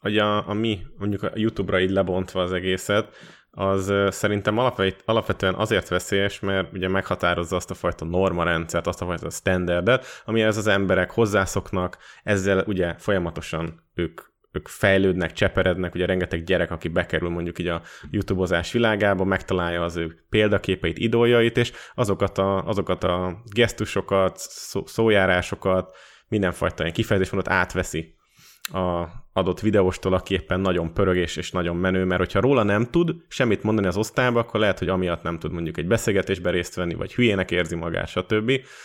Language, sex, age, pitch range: Hungarian, male, 20-39, 90-105 Hz